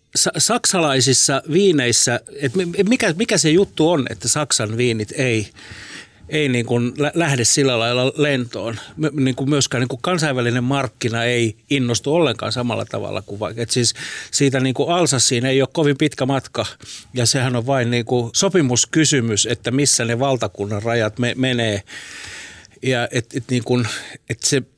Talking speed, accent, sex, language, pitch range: 150 wpm, native, male, Finnish, 115-150 Hz